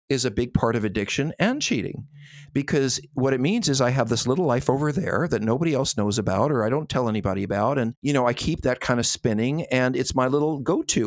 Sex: male